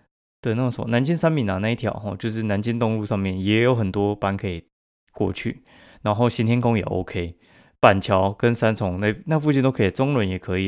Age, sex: 20-39, male